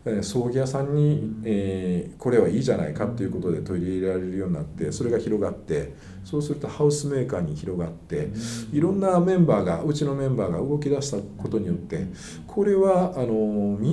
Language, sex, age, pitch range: Japanese, male, 50-69, 105-155 Hz